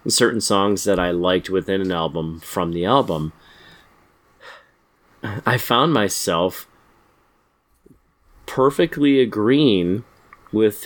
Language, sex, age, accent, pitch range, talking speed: English, male, 30-49, American, 90-115 Hz, 95 wpm